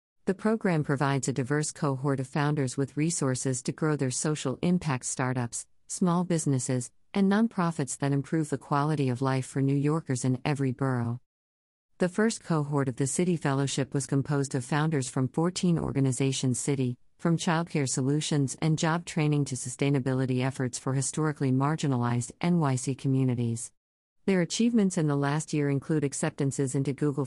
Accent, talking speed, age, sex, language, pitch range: American, 155 wpm, 50-69, female, English, 130-155 Hz